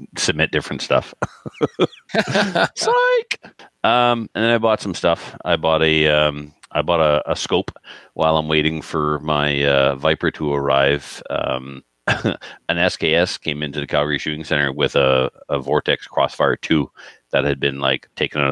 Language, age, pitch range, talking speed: English, 40-59, 65-75 Hz, 160 wpm